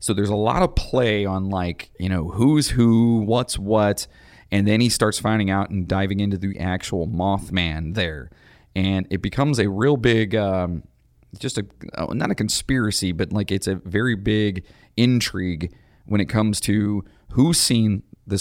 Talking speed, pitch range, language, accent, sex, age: 175 wpm, 90-110 Hz, English, American, male, 30-49